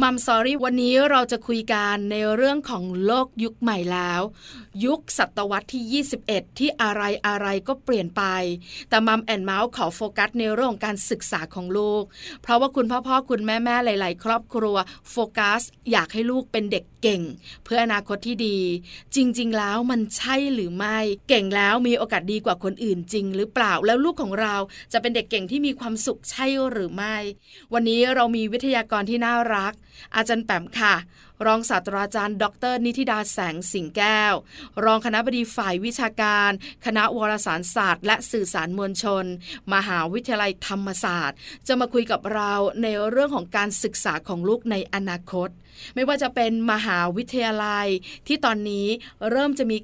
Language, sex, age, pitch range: Thai, female, 20-39, 200-235 Hz